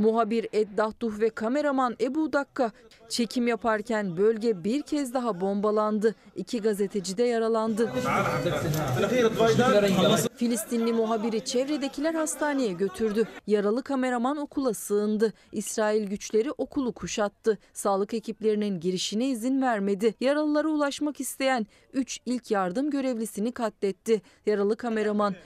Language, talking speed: Turkish, 105 wpm